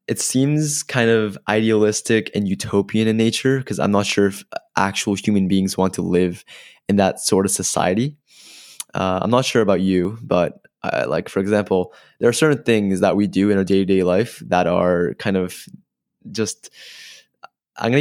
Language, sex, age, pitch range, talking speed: English, male, 20-39, 95-115 Hz, 180 wpm